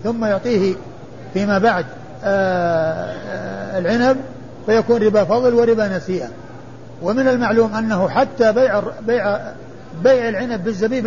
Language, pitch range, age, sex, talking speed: Arabic, 170-230 Hz, 50-69, male, 120 wpm